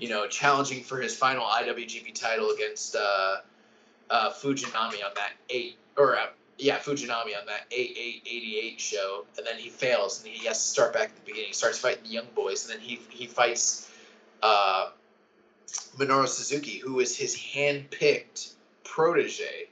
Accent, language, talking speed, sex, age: American, English, 170 wpm, male, 20-39